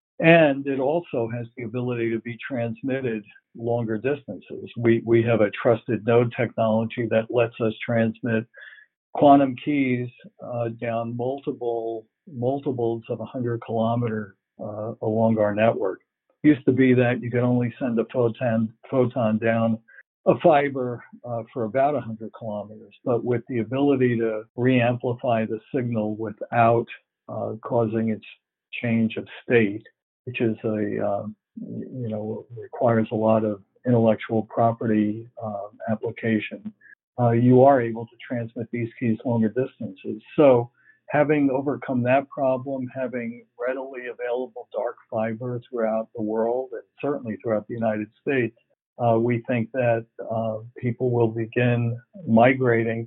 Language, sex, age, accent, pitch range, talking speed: English, male, 60-79, American, 110-125 Hz, 140 wpm